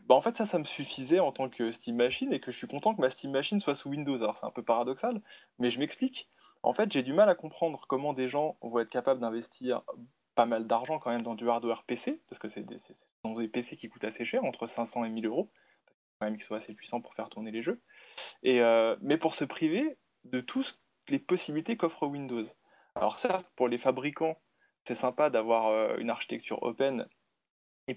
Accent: French